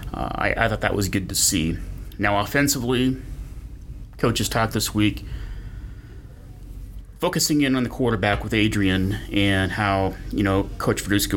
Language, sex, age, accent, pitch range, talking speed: English, male, 30-49, American, 90-105 Hz, 145 wpm